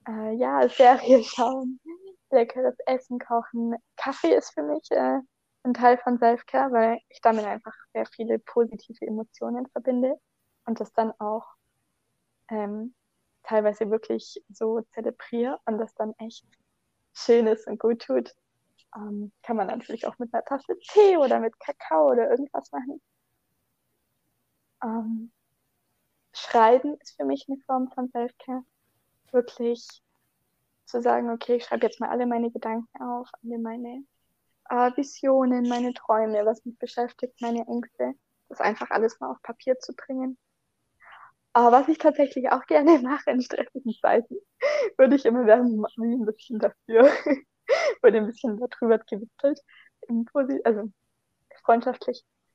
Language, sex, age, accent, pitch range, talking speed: German, female, 20-39, German, 225-265 Hz, 140 wpm